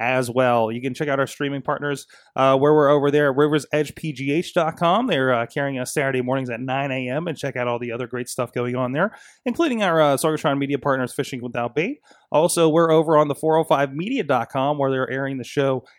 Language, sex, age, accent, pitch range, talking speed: English, male, 20-39, American, 125-150 Hz, 210 wpm